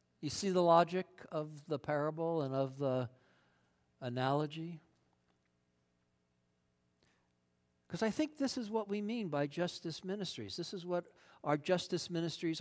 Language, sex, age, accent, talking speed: English, male, 60-79, American, 135 wpm